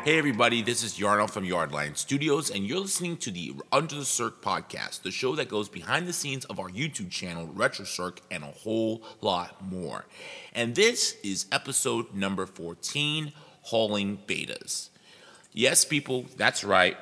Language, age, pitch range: English, 30-49, 90-120 Hz